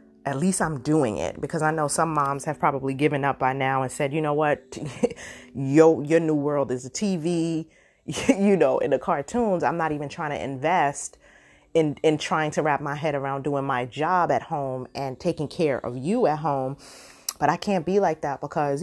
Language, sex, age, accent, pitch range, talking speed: English, female, 20-39, American, 140-175 Hz, 205 wpm